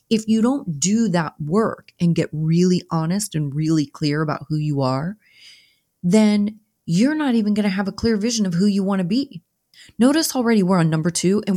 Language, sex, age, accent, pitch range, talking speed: English, female, 30-49, American, 150-200 Hz, 195 wpm